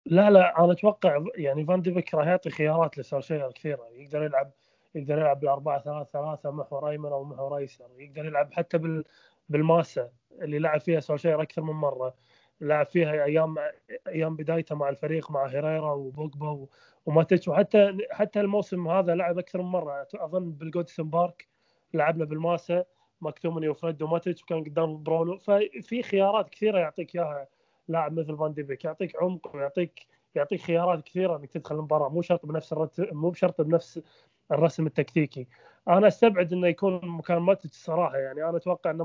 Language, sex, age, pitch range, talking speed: Arabic, male, 20-39, 150-180 Hz, 155 wpm